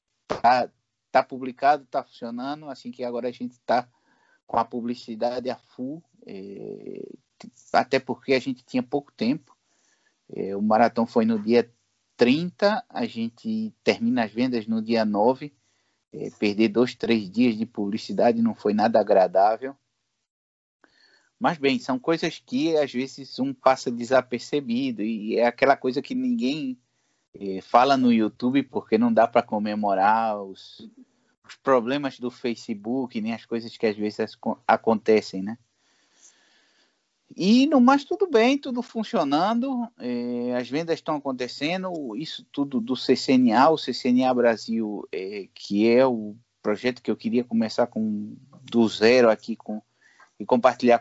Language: Portuguese